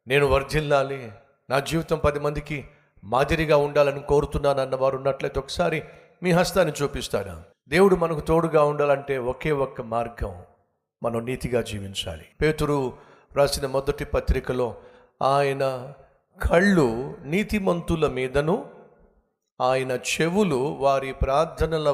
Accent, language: native, Telugu